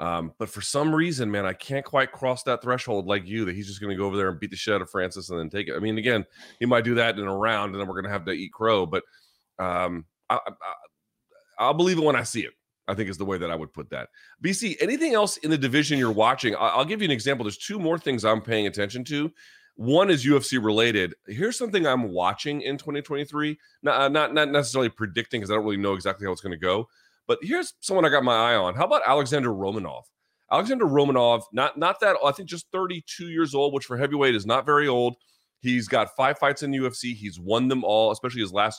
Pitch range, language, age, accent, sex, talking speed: 105-140 Hz, English, 30-49, American, male, 250 wpm